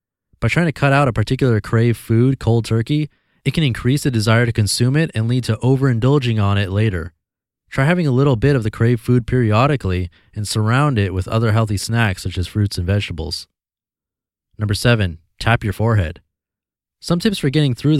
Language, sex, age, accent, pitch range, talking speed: English, male, 20-39, American, 105-140 Hz, 195 wpm